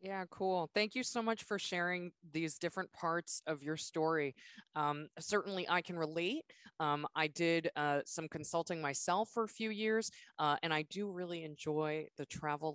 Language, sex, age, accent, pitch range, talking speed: English, female, 20-39, American, 145-180 Hz, 180 wpm